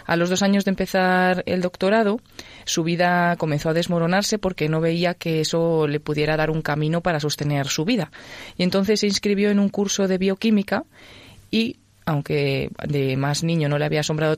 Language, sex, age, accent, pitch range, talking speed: Spanish, female, 20-39, Spanish, 155-185 Hz, 190 wpm